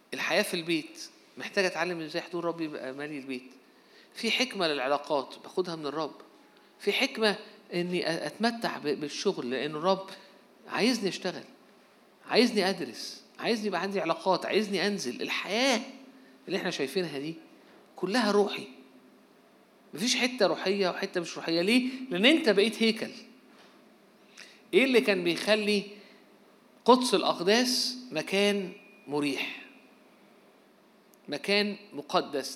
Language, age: Arabic, 50-69